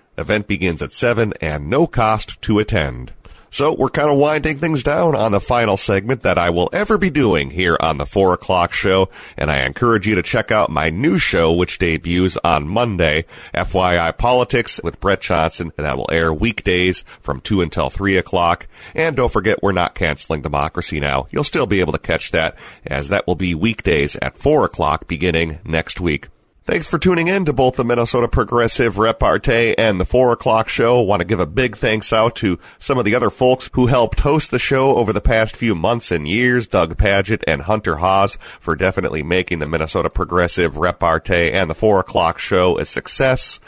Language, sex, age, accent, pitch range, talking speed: English, male, 40-59, American, 85-120 Hz, 200 wpm